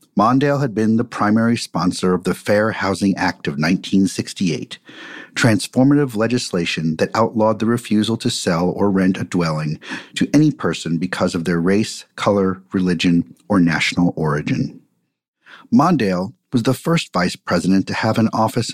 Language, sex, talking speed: English, male, 150 wpm